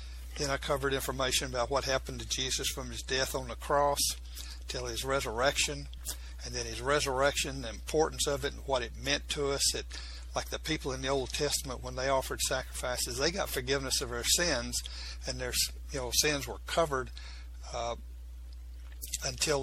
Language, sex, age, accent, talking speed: English, male, 60-79, American, 180 wpm